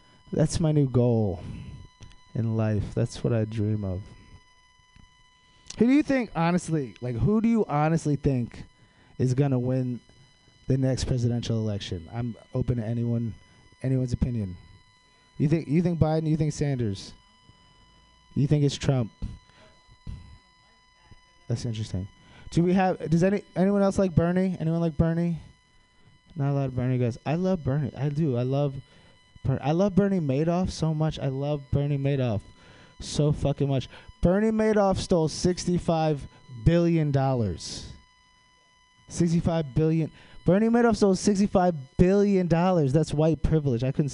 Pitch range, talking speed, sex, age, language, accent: 115-165 Hz, 145 wpm, male, 20-39, English, American